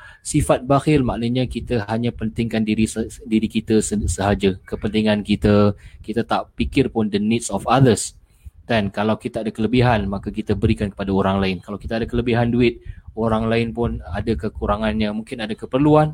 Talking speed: 165 wpm